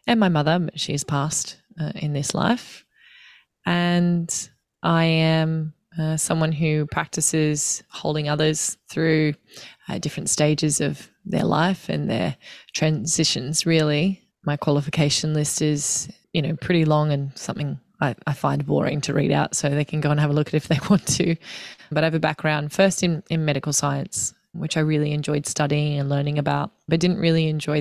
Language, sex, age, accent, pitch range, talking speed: English, female, 20-39, Australian, 150-170 Hz, 180 wpm